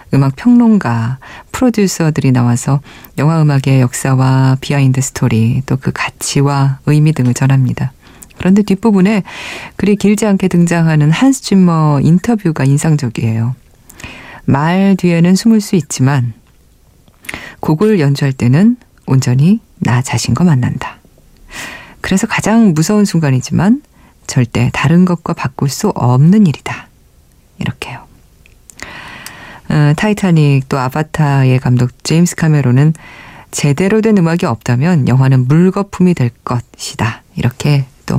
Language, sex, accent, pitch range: Korean, female, native, 130-175 Hz